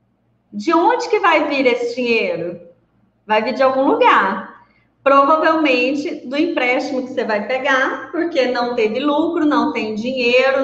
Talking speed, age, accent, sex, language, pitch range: 145 wpm, 20-39, Brazilian, female, Portuguese, 250-320 Hz